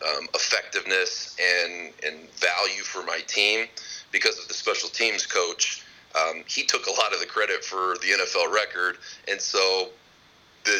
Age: 30-49